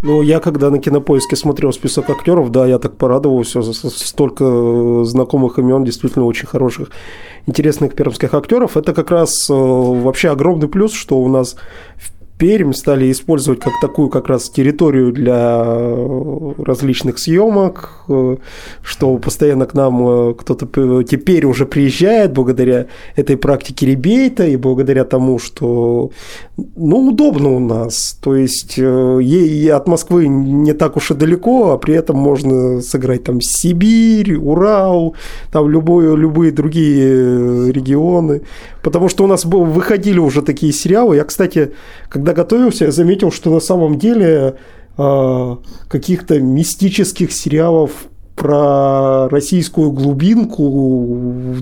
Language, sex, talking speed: Russian, male, 125 wpm